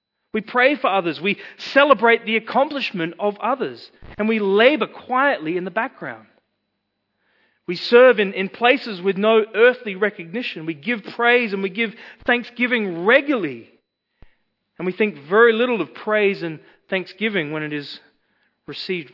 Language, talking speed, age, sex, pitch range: English, 145 wpm, 40-59, male, 145-220 Hz